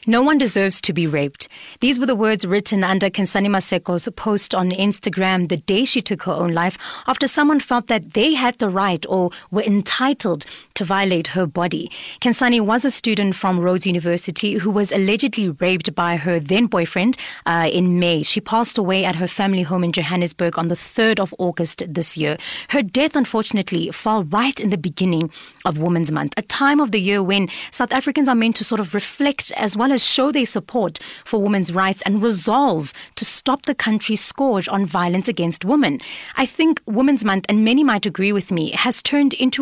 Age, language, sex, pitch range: 30-49, English, female, 180-240 Hz